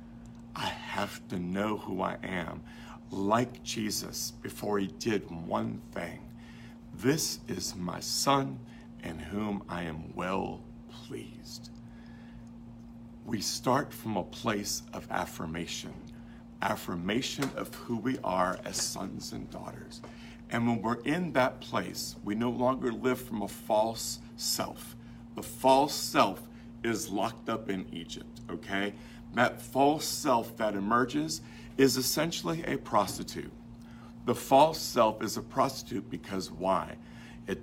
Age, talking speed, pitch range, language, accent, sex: 60-79, 130 wpm, 110-120 Hz, English, American, male